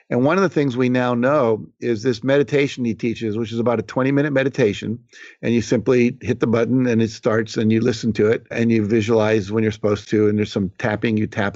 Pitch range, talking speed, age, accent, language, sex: 110-135 Hz, 240 wpm, 50-69, American, English, male